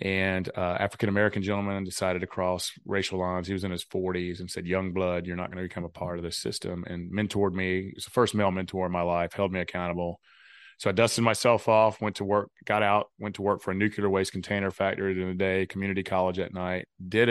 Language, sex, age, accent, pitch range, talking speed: English, male, 30-49, American, 90-100 Hz, 245 wpm